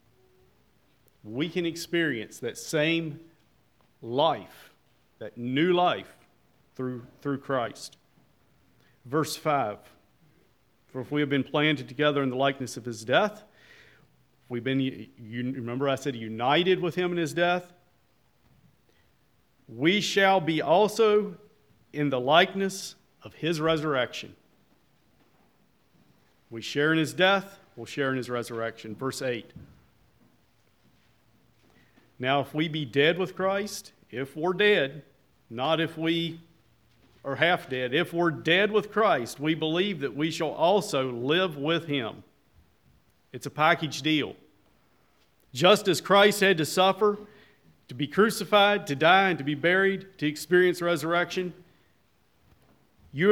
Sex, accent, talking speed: male, American, 130 wpm